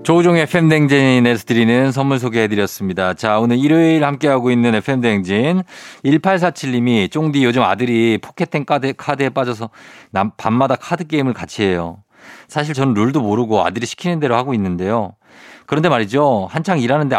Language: Korean